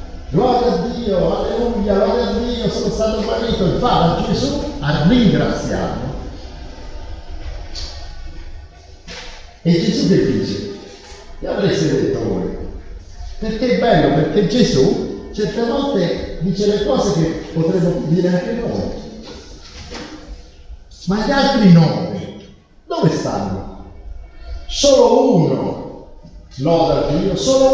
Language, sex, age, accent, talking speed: Italian, male, 50-69, native, 110 wpm